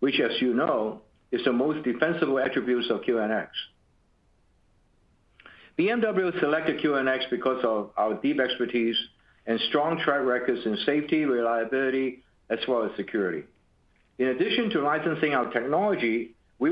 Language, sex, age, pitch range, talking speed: English, male, 60-79, 115-150 Hz, 135 wpm